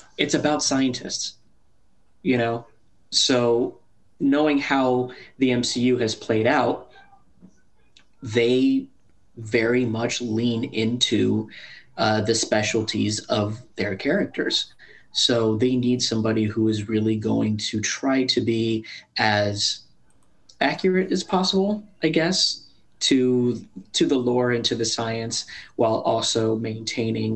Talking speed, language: 115 wpm, English